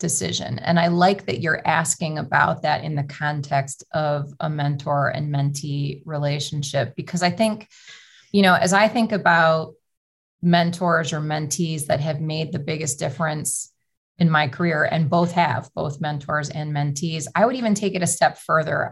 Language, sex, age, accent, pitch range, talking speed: English, female, 30-49, American, 150-175 Hz, 170 wpm